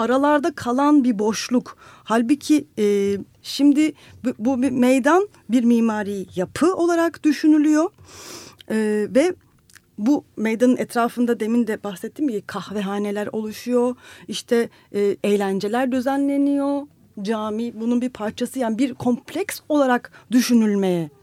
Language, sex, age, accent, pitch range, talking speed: Turkish, female, 40-59, native, 185-255 Hz, 110 wpm